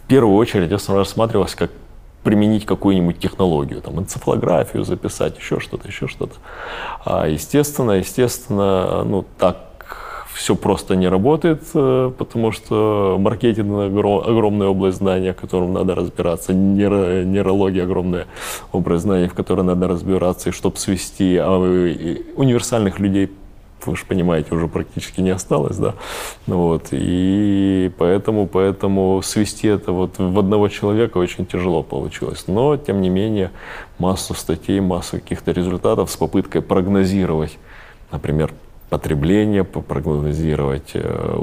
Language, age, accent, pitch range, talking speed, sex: Ukrainian, 20-39, native, 90-100 Hz, 120 wpm, male